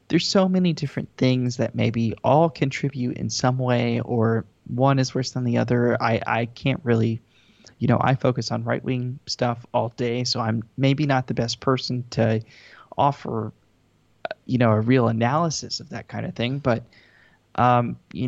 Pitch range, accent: 115-140 Hz, American